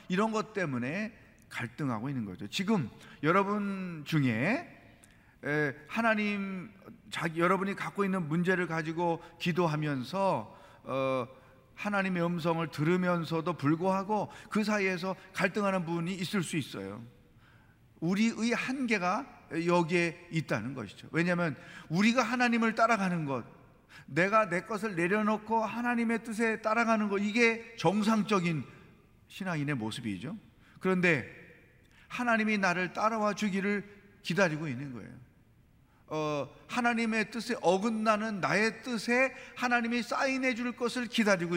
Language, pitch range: Korean, 150-220 Hz